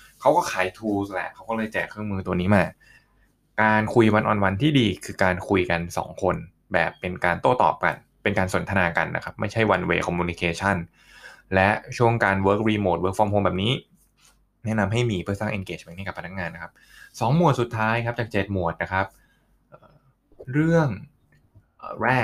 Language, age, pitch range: Thai, 20-39, 95-115 Hz